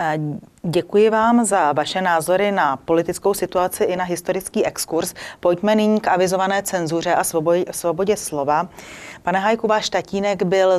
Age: 30-49